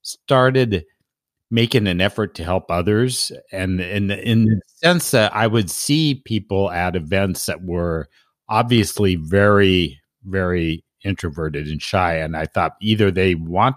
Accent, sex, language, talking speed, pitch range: American, male, English, 145 wpm, 85-110 Hz